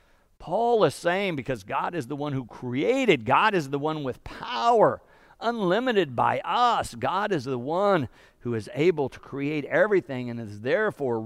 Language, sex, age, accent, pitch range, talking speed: English, male, 50-69, American, 125-170 Hz, 170 wpm